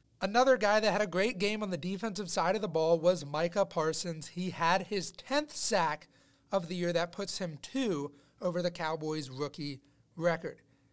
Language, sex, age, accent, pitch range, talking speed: English, male, 30-49, American, 150-200 Hz, 185 wpm